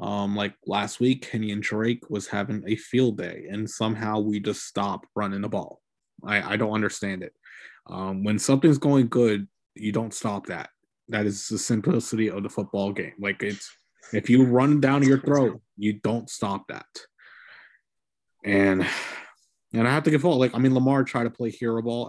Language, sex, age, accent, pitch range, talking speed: English, male, 20-39, American, 100-115 Hz, 190 wpm